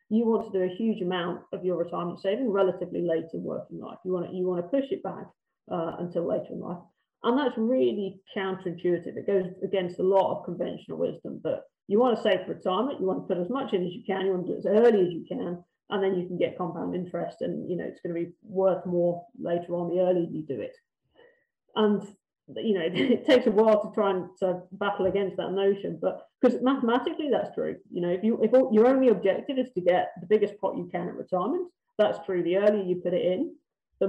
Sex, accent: female, British